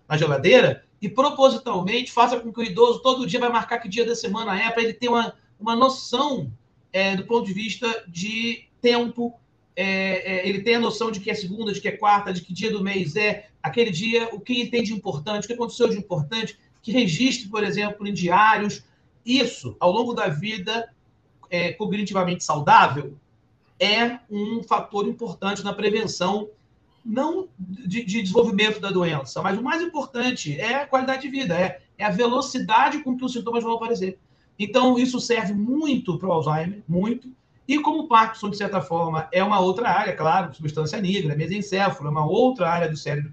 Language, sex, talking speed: Portuguese, male, 190 wpm